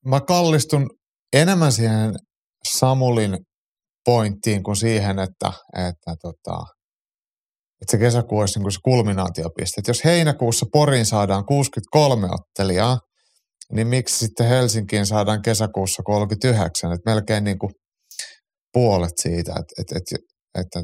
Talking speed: 125 wpm